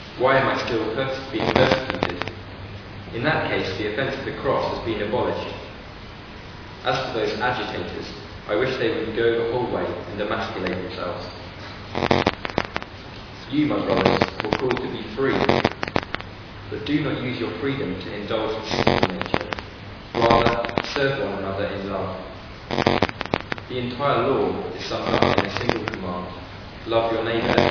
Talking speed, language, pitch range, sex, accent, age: 155 wpm, English, 100-120 Hz, male, British, 20-39